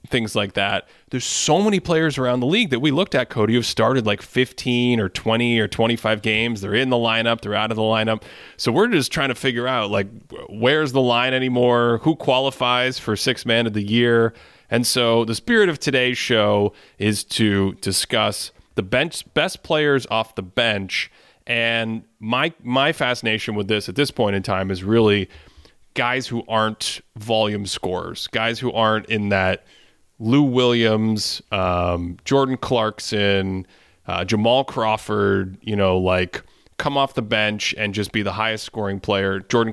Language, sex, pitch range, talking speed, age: English, male, 105-125 Hz, 175 wpm, 30-49